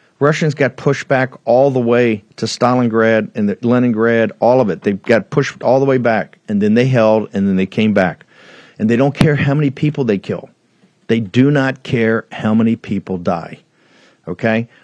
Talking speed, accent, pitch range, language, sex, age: 200 wpm, American, 110-140 Hz, English, male, 50-69